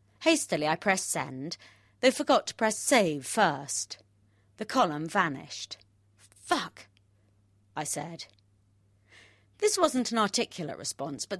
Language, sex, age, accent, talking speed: English, female, 30-49, British, 115 wpm